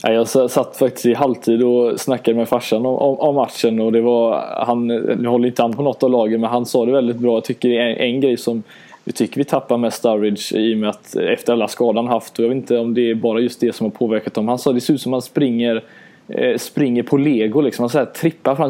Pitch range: 115-140 Hz